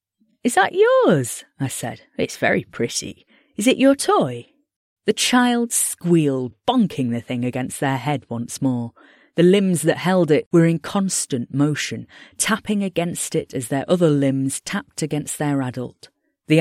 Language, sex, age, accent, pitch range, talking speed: English, female, 30-49, British, 130-195 Hz, 160 wpm